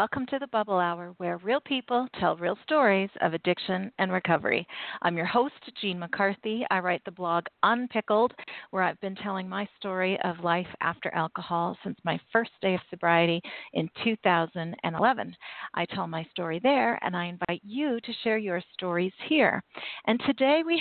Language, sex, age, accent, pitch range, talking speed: English, female, 40-59, American, 185-240 Hz, 175 wpm